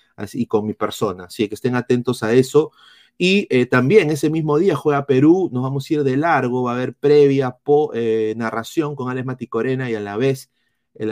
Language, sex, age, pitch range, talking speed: Spanish, male, 30-49, 120-145 Hz, 210 wpm